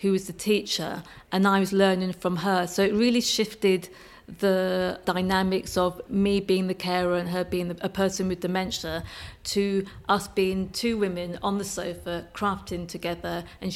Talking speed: 170 wpm